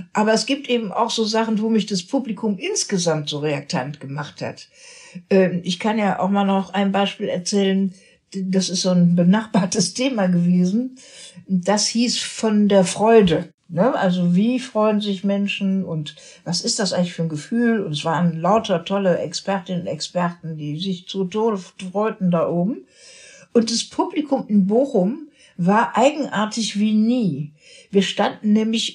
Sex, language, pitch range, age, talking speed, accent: female, German, 175-220 Hz, 60-79, 160 wpm, German